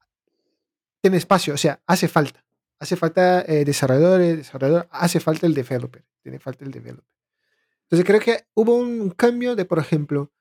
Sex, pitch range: male, 135-180 Hz